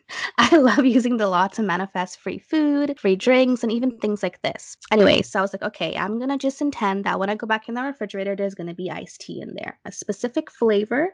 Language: English